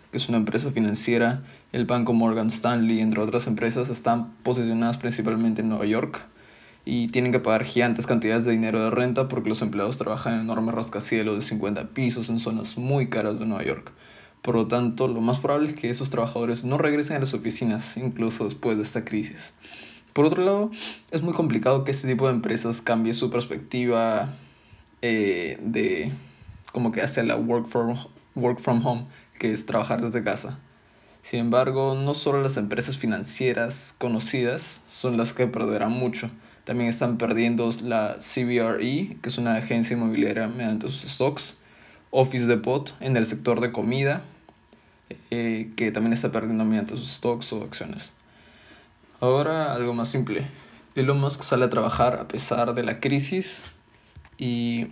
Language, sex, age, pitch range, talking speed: Spanish, male, 20-39, 110-125 Hz, 165 wpm